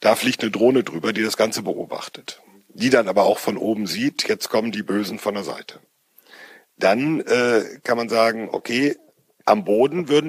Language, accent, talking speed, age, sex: German, German, 185 wpm, 50-69, male